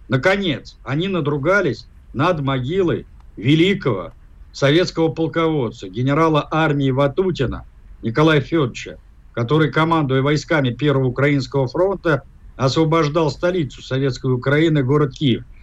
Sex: male